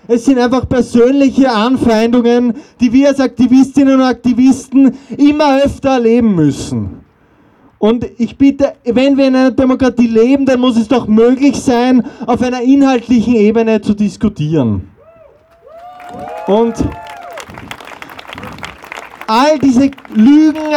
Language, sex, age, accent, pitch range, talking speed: German, male, 30-49, German, 210-275 Hz, 115 wpm